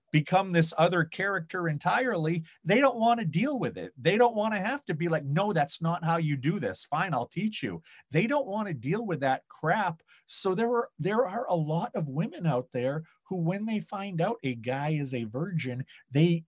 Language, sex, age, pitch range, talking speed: English, male, 40-59, 130-180 Hz, 220 wpm